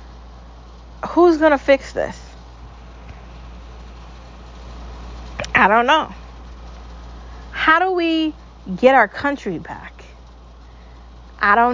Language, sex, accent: English, female, American